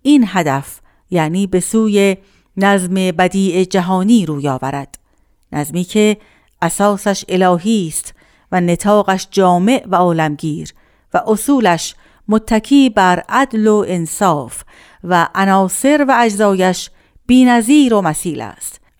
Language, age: Persian, 50-69